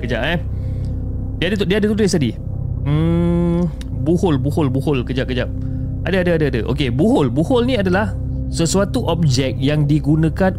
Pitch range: 125-165 Hz